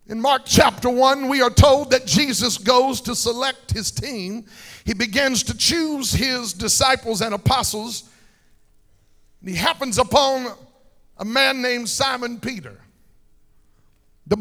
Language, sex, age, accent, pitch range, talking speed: English, male, 50-69, American, 195-265 Hz, 130 wpm